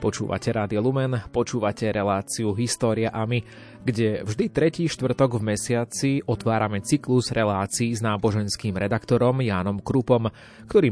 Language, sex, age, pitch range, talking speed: Slovak, male, 30-49, 105-125 Hz, 125 wpm